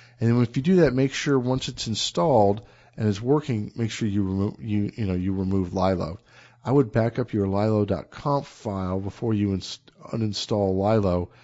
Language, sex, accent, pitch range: English, male, American, 100-120 Hz